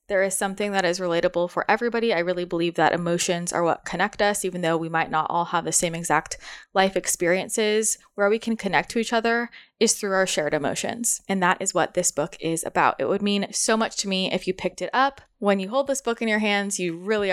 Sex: female